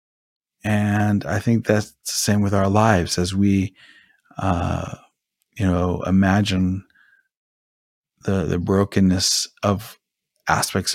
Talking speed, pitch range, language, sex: 110 wpm, 95-105 Hz, English, male